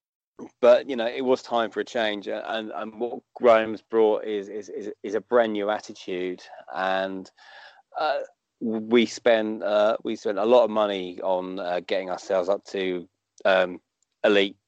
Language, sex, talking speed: English, male, 170 wpm